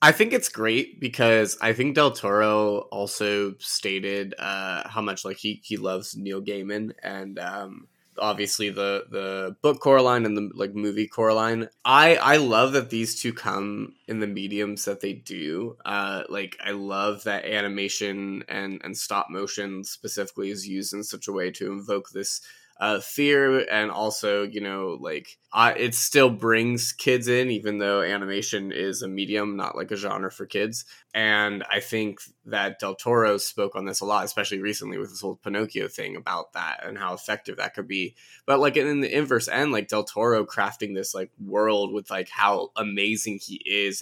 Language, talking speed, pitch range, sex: English, 185 wpm, 100-110 Hz, male